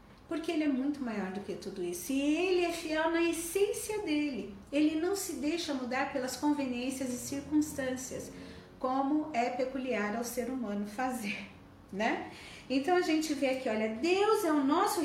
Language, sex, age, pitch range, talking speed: Portuguese, female, 40-59, 235-325 Hz, 170 wpm